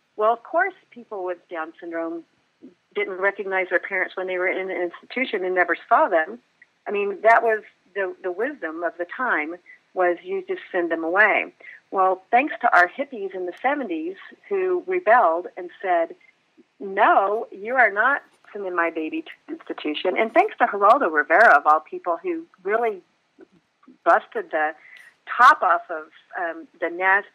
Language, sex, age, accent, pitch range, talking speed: English, female, 40-59, American, 175-265 Hz, 170 wpm